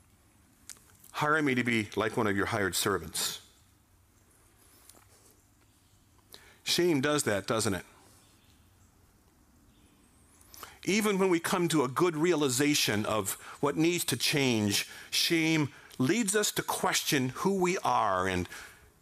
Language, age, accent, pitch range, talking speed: English, 50-69, American, 105-170 Hz, 115 wpm